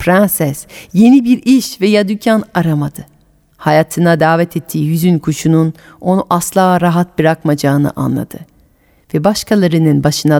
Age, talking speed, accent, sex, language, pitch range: 40-59, 115 wpm, native, female, Turkish, 155-240 Hz